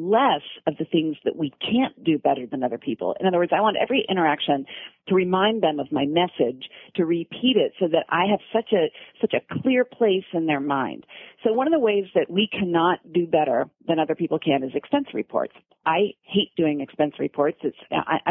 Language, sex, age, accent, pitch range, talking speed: English, female, 40-59, American, 155-210 Hz, 215 wpm